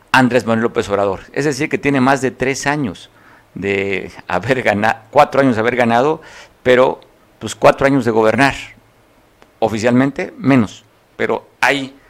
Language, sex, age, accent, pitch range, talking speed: Spanish, male, 50-69, Mexican, 110-140 Hz, 150 wpm